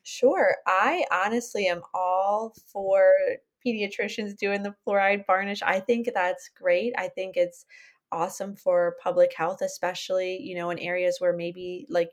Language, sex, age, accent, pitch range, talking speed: English, female, 20-39, American, 180-235 Hz, 150 wpm